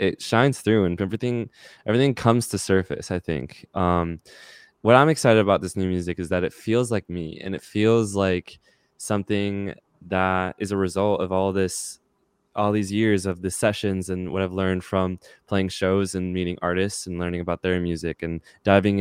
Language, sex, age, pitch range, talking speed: English, male, 20-39, 90-105 Hz, 190 wpm